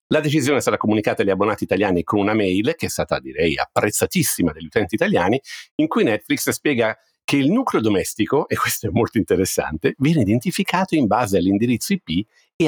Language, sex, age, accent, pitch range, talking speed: Italian, male, 50-69, native, 95-130 Hz, 180 wpm